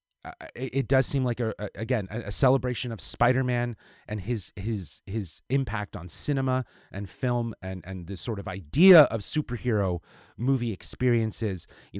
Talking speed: 160 wpm